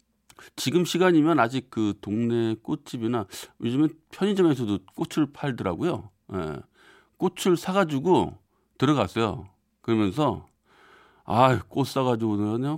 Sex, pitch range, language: male, 100-150 Hz, Korean